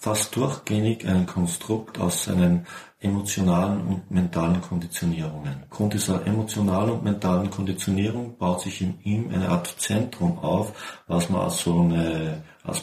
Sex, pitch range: male, 90-110 Hz